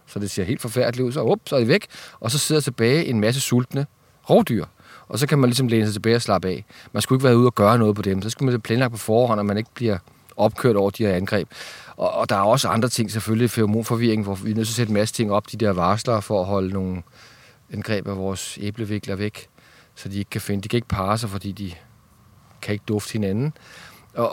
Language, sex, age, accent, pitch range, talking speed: Danish, male, 40-59, native, 105-120 Hz, 265 wpm